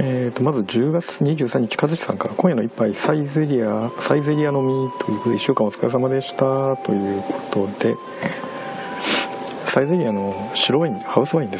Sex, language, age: male, Japanese, 50-69